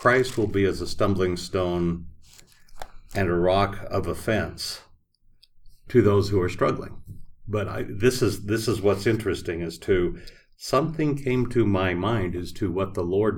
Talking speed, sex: 165 wpm, male